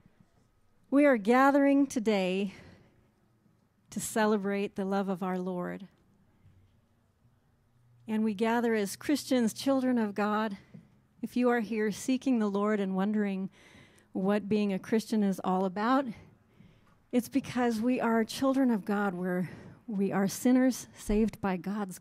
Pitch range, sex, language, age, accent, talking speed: 185-220 Hz, female, English, 40-59, American, 130 wpm